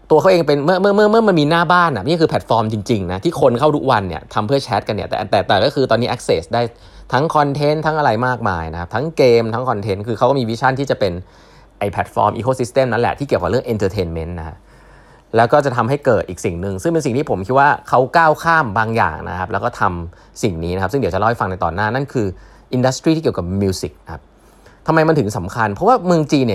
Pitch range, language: 95-140 Hz, Thai